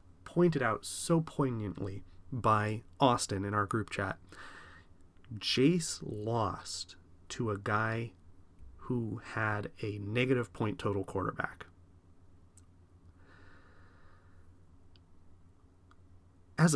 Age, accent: 30-49, American